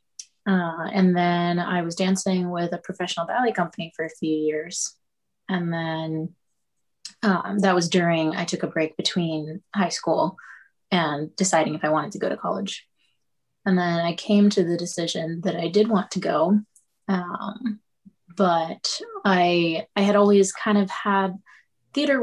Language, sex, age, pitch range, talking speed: English, female, 20-39, 165-200 Hz, 160 wpm